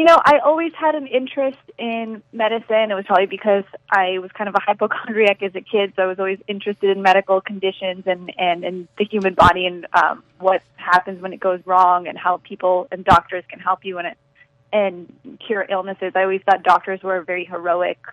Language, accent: English, American